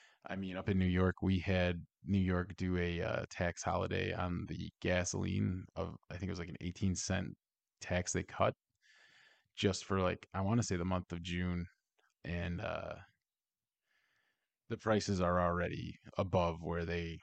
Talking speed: 175 wpm